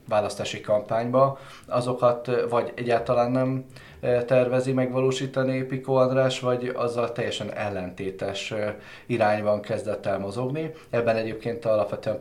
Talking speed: 105 wpm